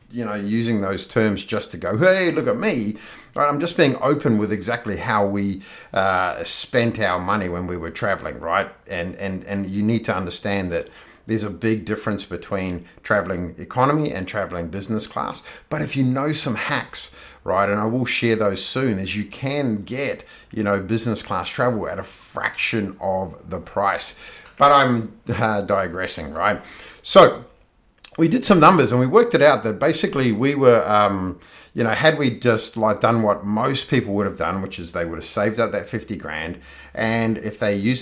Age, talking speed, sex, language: 50-69, 195 wpm, male, English